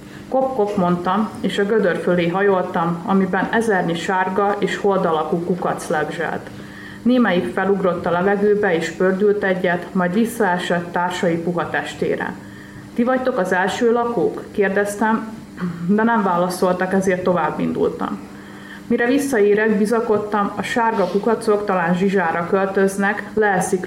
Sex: female